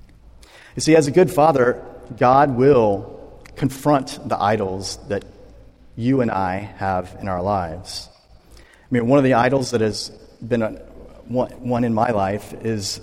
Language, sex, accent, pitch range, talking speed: English, male, American, 100-125 Hz, 150 wpm